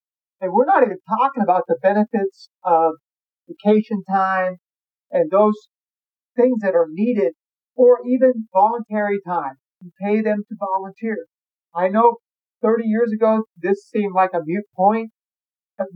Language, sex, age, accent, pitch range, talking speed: English, male, 50-69, American, 180-230 Hz, 145 wpm